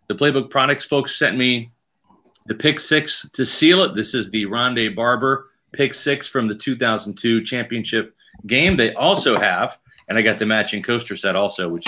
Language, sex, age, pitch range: English, male, 40-59, 115-150 Hz